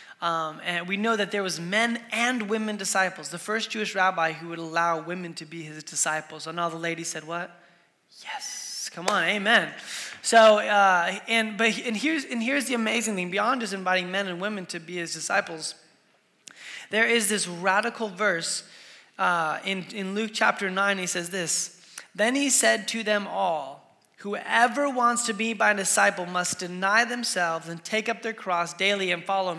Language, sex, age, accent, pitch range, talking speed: English, male, 20-39, American, 165-215 Hz, 185 wpm